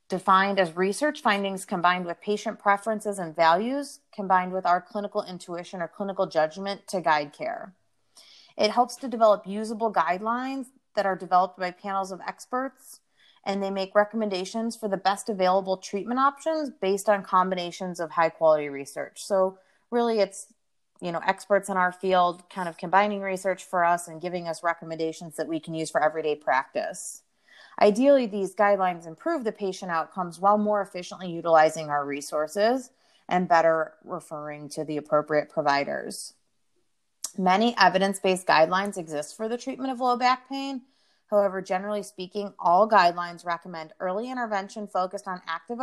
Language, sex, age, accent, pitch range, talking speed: English, female, 30-49, American, 175-215 Hz, 155 wpm